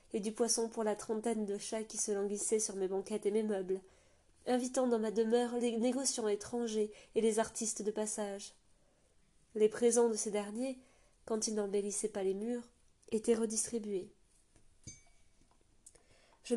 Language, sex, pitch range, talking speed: French, female, 200-230 Hz, 155 wpm